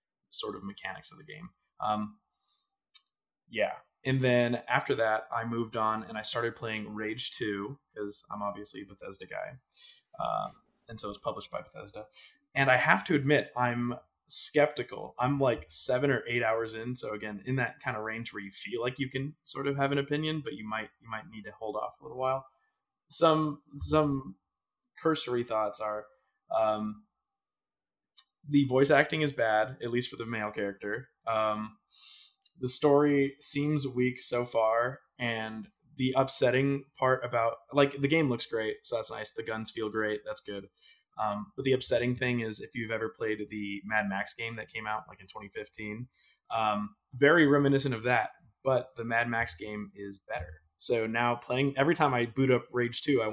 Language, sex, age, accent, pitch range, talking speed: English, male, 20-39, American, 110-140 Hz, 185 wpm